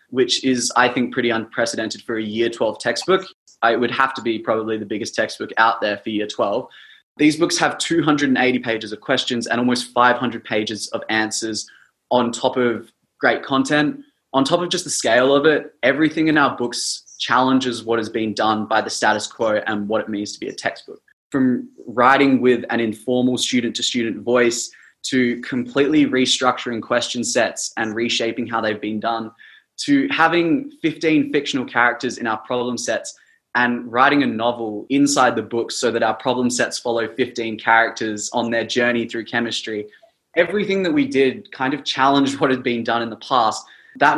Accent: Australian